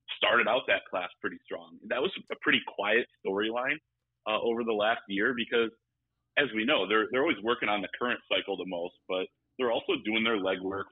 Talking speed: 205 wpm